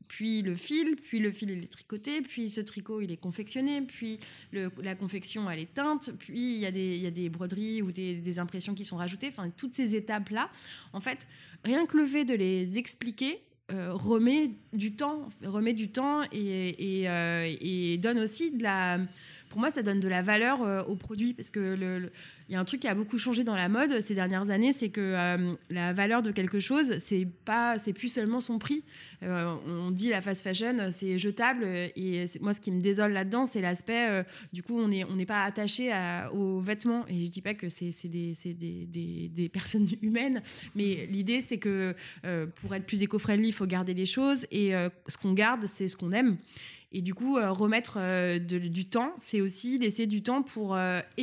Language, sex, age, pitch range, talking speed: French, female, 20-39, 185-235 Hz, 225 wpm